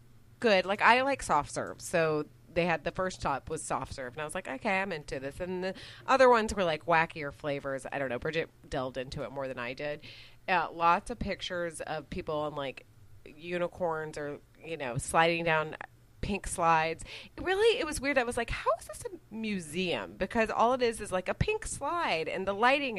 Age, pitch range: 30-49, 145-200 Hz